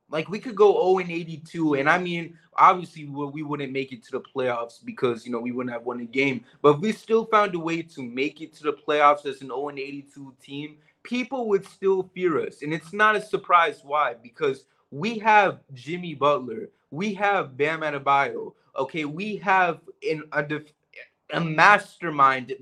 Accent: American